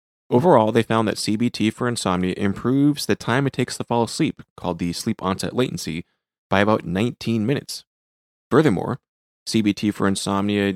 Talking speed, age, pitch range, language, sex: 155 wpm, 30-49, 90-120 Hz, English, male